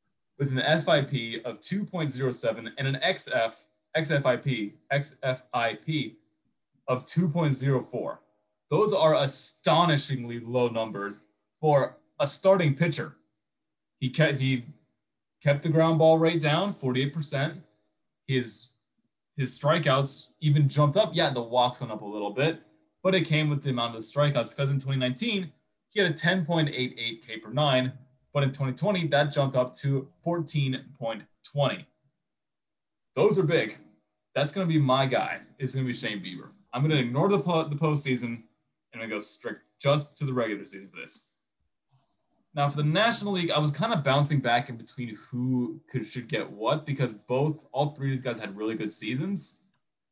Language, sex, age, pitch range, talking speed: English, male, 20-39, 120-155 Hz, 155 wpm